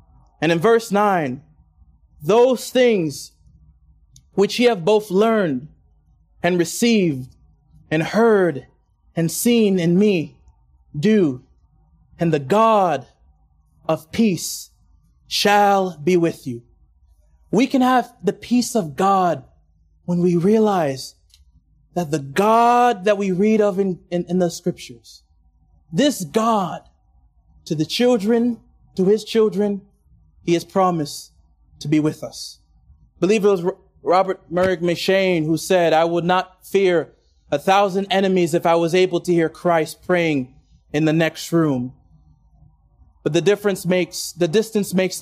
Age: 30-49